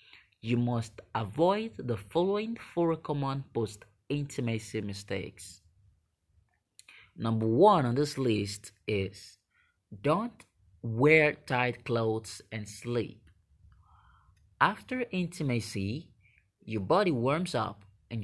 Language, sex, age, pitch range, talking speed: English, male, 30-49, 100-140 Hz, 90 wpm